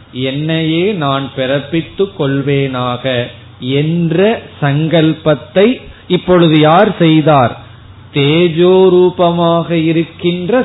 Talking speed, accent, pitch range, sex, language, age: 70 wpm, native, 125-160 Hz, male, Tamil, 30-49